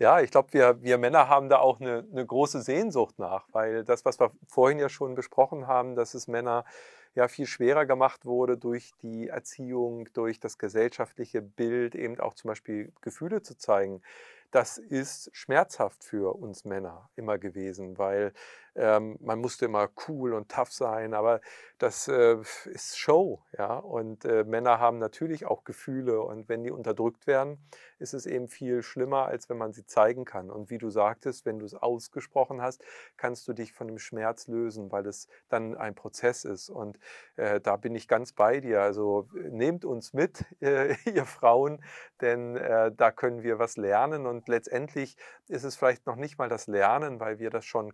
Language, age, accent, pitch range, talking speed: German, 40-59, German, 110-130 Hz, 180 wpm